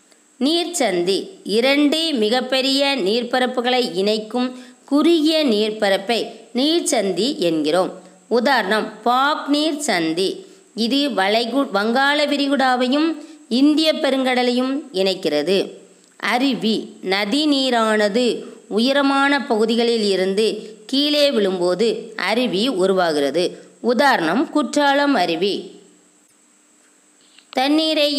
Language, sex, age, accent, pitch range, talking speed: Tamil, female, 20-39, native, 220-285 Hz, 75 wpm